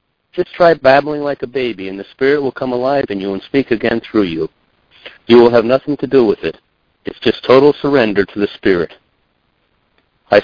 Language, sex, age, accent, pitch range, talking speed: English, male, 60-79, American, 100-135 Hz, 200 wpm